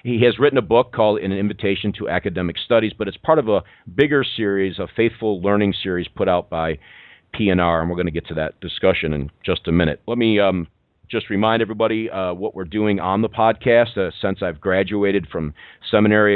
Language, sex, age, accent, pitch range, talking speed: English, male, 40-59, American, 90-110 Hz, 210 wpm